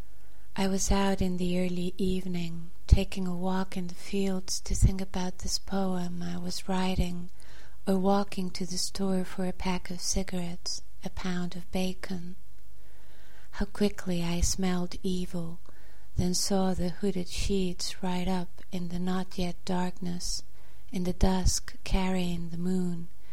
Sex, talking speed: female, 145 wpm